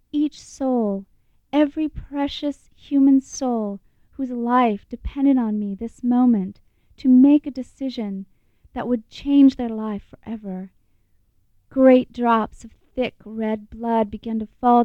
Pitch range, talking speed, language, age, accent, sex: 215-260 Hz, 130 wpm, English, 40-59, American, female